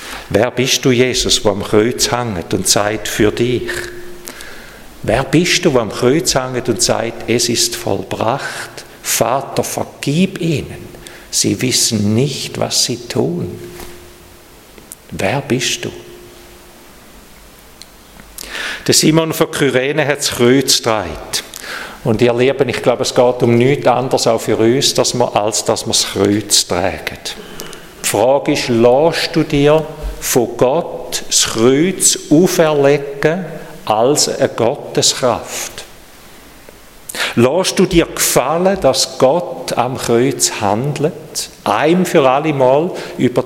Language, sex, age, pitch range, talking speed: German, male, 50-69, 120-155 Hz, 125 wpm